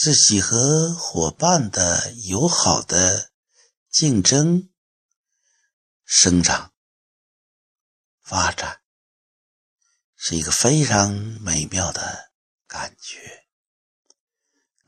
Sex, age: male, 60-79